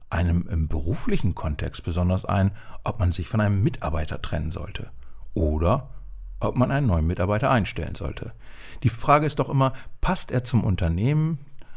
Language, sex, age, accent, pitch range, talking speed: German, male, 60-79, German, 85-115 Hz, 160 wpm